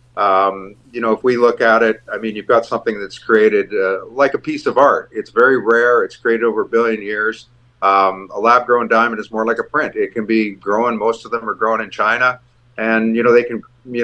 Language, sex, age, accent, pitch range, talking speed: English, male, 50-69, American, 105-125 Hz, 240 wpm